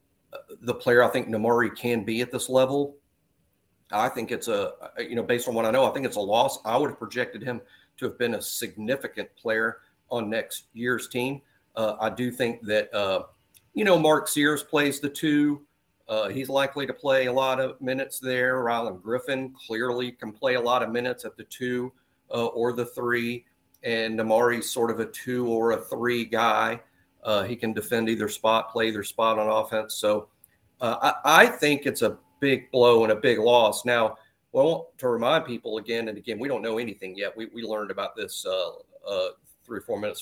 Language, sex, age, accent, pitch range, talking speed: English, male, 40-59, American, 110-140 Hz, 205 wpm